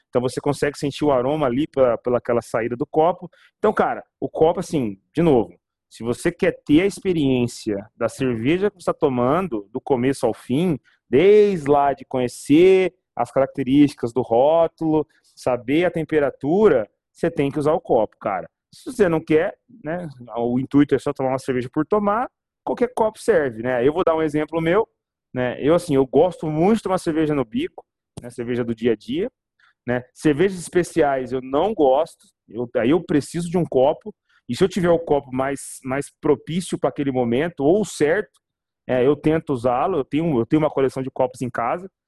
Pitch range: 130-175 Hz